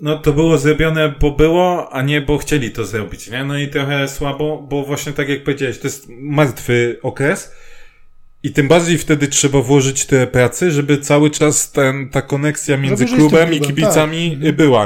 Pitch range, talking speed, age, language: 110-140 Hz, 180 wpm, 20-39, Polish